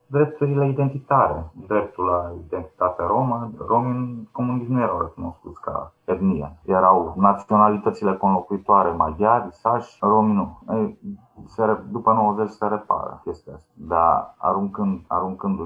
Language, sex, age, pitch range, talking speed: Romanian, male, 30-49, 90-130 Hz, 125 wpm